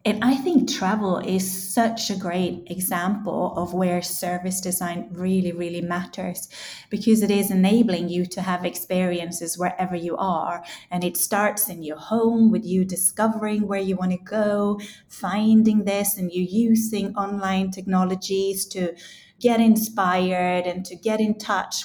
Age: 30-49